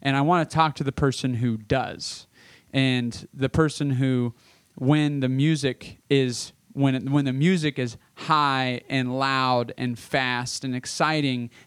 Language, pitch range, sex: English, 125-155 Hz, male